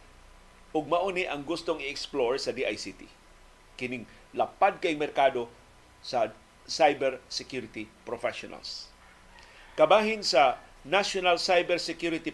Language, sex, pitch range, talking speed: Filipino, male, 125-170 Hz, 85 wpm